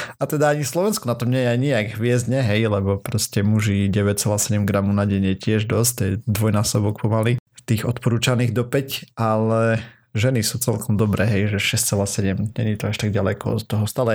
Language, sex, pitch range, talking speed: Slovak, male, 105-130 Hz, 195 wpm